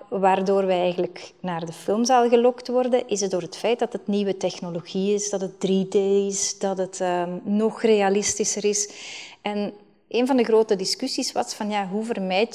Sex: female